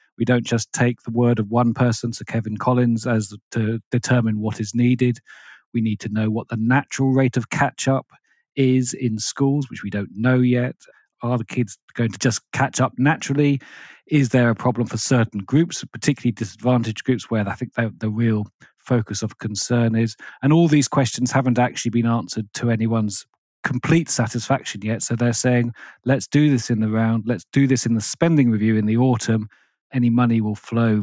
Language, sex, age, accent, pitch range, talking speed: English, male, 40-59, British, 110-130 Hz, 195 wpm